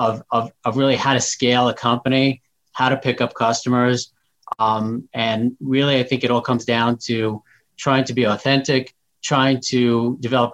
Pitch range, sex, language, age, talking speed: 115-135 Hz, male, English, 30-49, 175 wpm